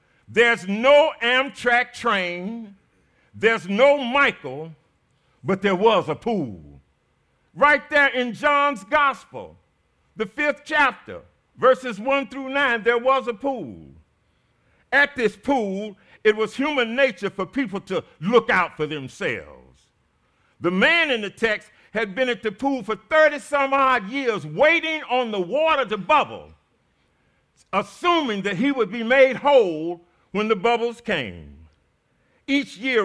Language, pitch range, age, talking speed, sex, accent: English, 190-275 Hz, 50-69, 135 wpm, male, American